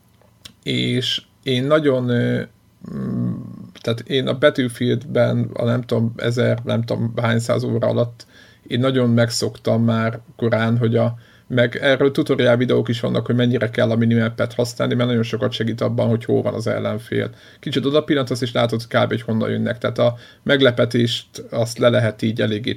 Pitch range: 110-125 Hz